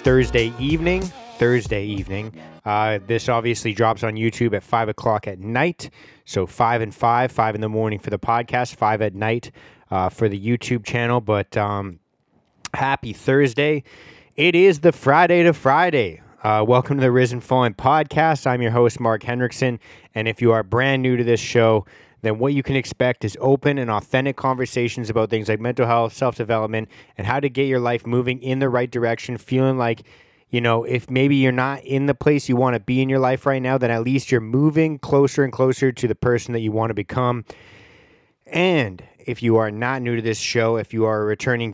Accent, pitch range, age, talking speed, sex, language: American, 110-130 Hz, 20-39, 205 wpm, male, English